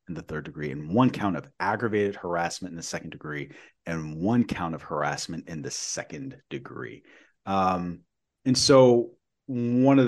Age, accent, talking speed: 30-49, American, 160 wpm